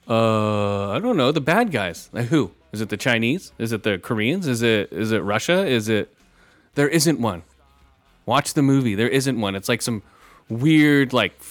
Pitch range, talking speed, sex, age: 110-145 Hz, 200 wpm, male, 30-49